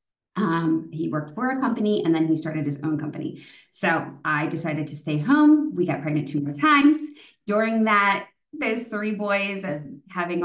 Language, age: English, 30-49